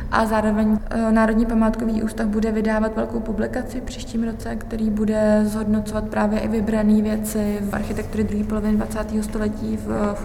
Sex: female